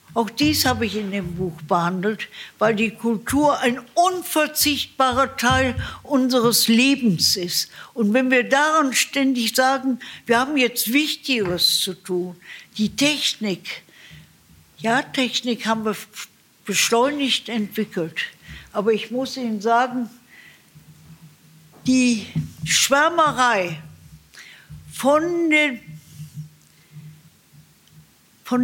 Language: German